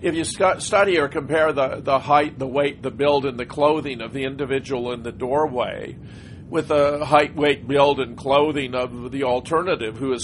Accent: American